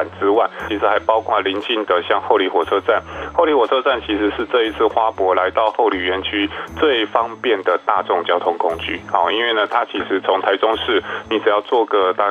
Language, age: Chinese, 20-39